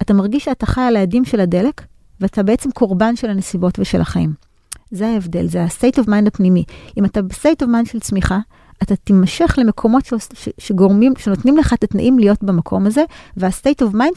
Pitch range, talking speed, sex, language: 180-235 Hz, 185 wpm, female, Hebrew